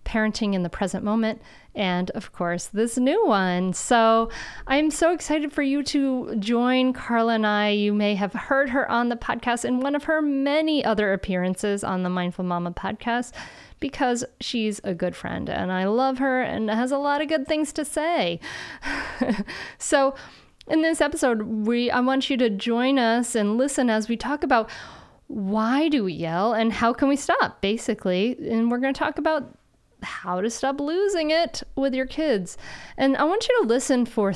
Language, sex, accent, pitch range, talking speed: English, female, American, 200-275 Hz, 190 wpm